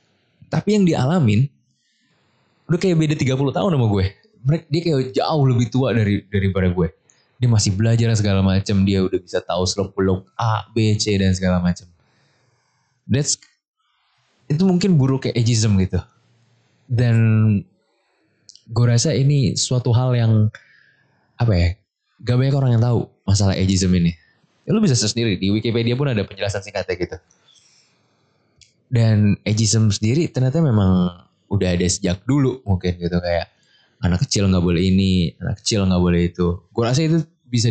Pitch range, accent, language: 95-130 Hz, native, Indonesian